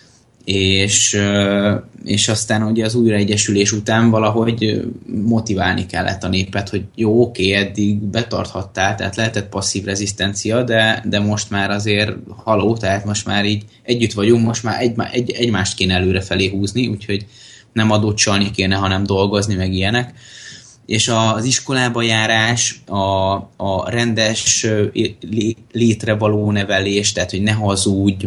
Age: 20-39